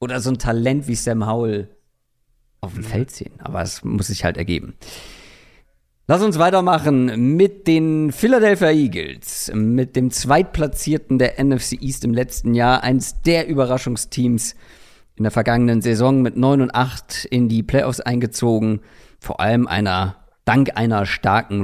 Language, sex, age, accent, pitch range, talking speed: German, male, 50-69, German, 110-135 Hz, 150 wpm